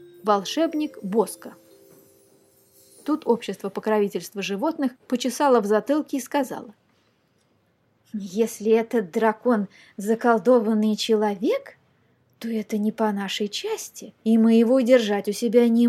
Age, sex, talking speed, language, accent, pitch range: 20-39, female, 110 wpm, Russian, native, 210-255 Hz